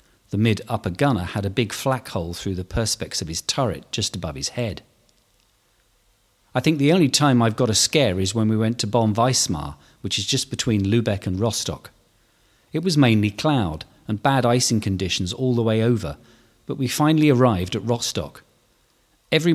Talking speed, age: 185 wpm, 40-59